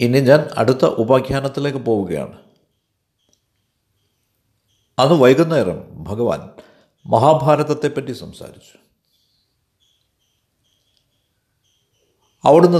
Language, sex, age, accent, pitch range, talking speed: Malayalam, male, 60-79, native, 120-160 Hz, 50 wpm